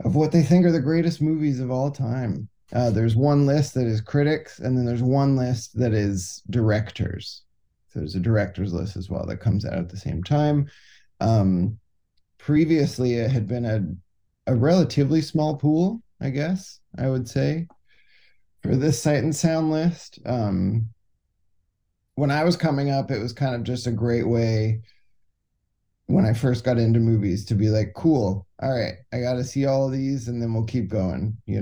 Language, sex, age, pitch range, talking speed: English, male, 20-39, 105-145 Hz, 190 wpm